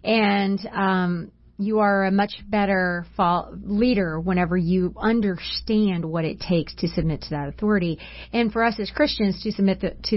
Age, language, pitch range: 30-49, English, 185-235 Hz